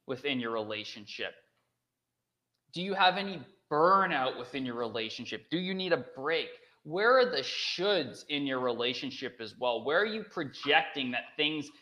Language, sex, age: English, male, 20-39